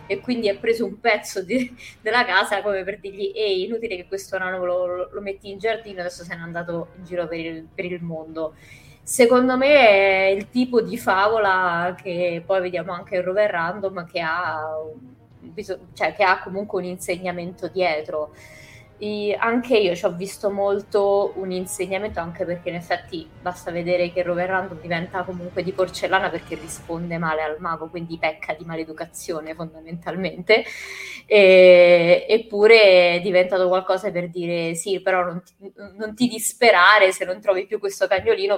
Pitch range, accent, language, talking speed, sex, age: 170-200 Hz, native, Italian, 175 wpm, female, 20-39